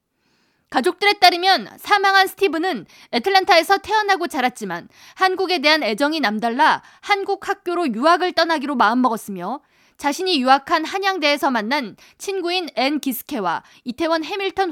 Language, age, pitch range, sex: Korean, 20-39, 250-360 Hz, female